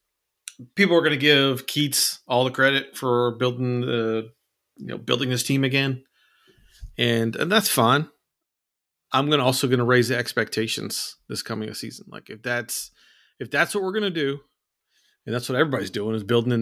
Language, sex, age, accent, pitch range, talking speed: English, male, 40-59, American, 120-140 Hz, 190 wpm